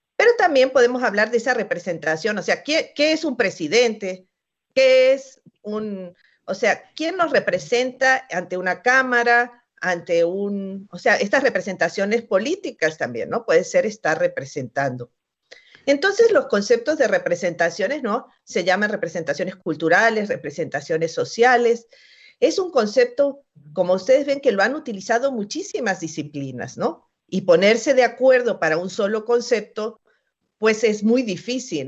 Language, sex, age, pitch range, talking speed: Spanish, female, 50-69, 180-275 Hz, 140 wpm